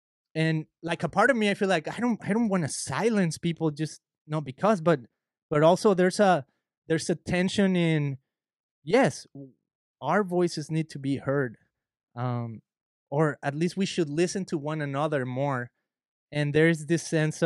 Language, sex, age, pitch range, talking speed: English, male, 20-39, 135-175 Hz, 170 wpm